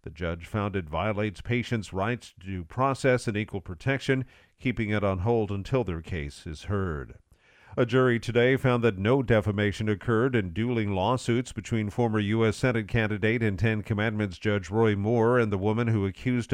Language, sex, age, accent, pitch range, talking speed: English, male, 50-69, American, 100-120 Hz, 180 wpm